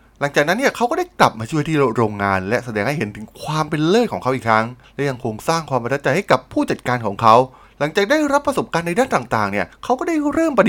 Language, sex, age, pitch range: Thai, male, 20-39, 115-185 Hz